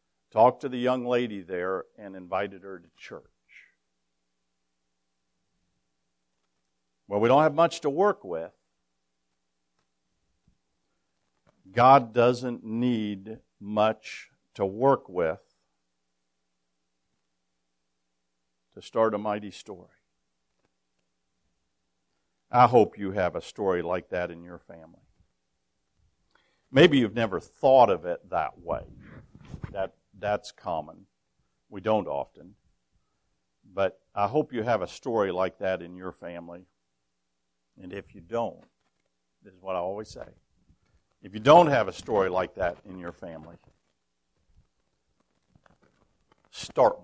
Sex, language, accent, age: male, English, American, 50-69